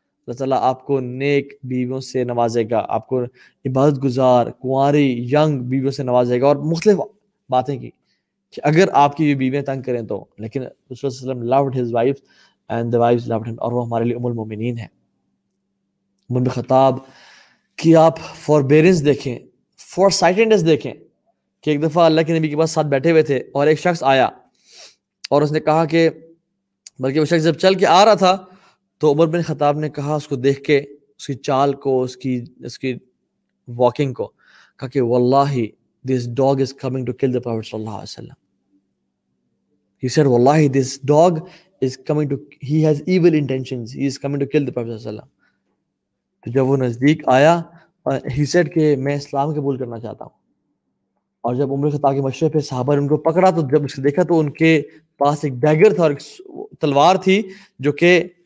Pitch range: 130-160 Hz